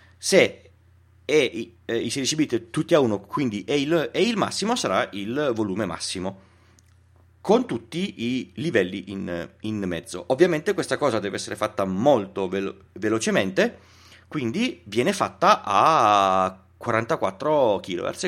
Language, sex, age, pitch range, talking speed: Italian, male, 30-49, 95-125 Hz, 120 wpm